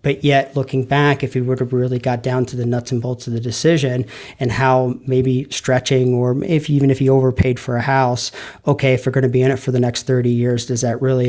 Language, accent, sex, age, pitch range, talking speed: English, American, male, 40-59, 125-135 Hz, 255 wpm